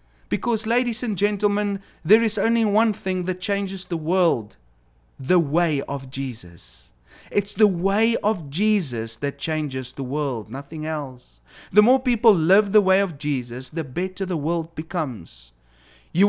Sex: male